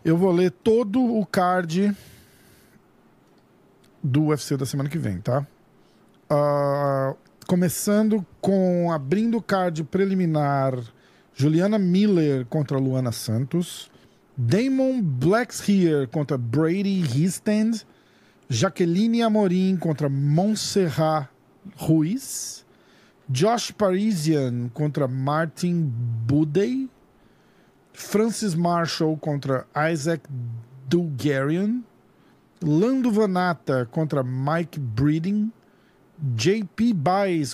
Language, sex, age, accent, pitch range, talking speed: Portuguese, male, 50-69, Brazilian, 140-195 Hz, 85 wpm